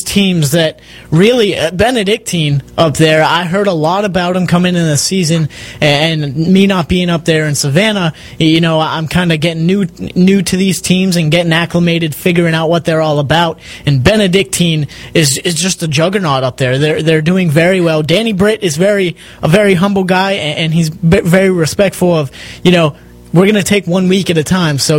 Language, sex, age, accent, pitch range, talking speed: English, male, 30-49, American, 155-190 Hz, 205 wpm